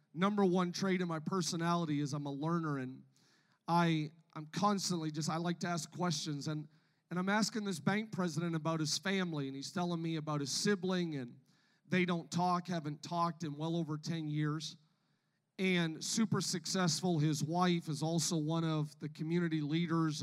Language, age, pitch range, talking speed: English, 40-59, 160-190 Hz, 180 wpm